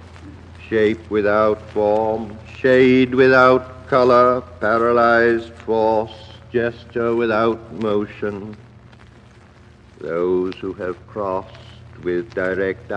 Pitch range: 105-120 Hz